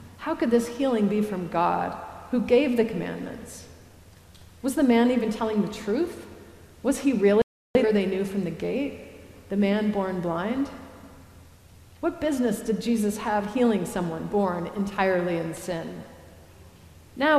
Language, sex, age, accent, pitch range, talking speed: English, female, 40-59, American, 170-230 Hz, 150 wpm